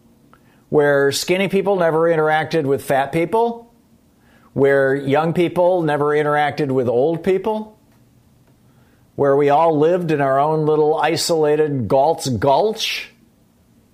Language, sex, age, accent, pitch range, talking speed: English, male, 50-69, American, 135-175 Hz, 115 wpm